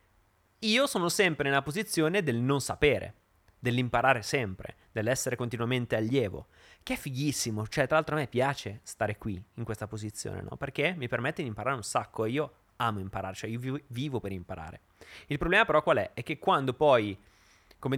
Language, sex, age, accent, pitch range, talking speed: Italian, male, 30-49, native, 105-140 Hz, 180 wpm